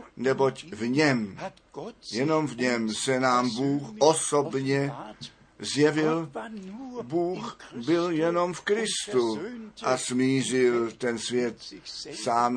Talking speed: 100 wpm